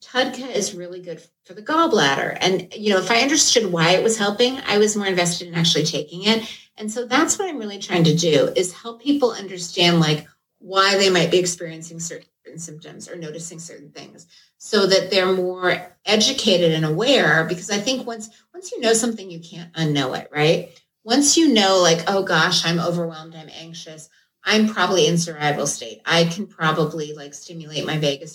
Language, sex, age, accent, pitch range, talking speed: English, female, 30-49, American, 160-215 Hz, 195 wpm